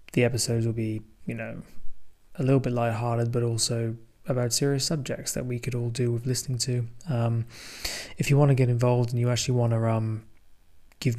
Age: 20-39